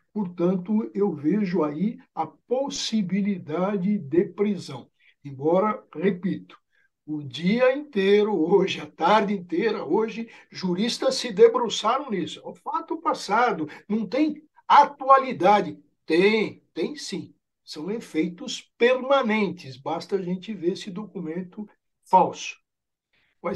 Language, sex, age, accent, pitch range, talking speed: Portuguese, male, 60-79, Brazilian, 170-250 Hz, 105 wpm